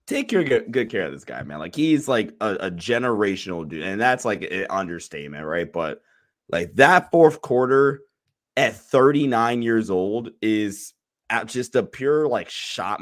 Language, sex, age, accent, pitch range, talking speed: English, male, 20-39, American, 105-135 Hz, 170 wpm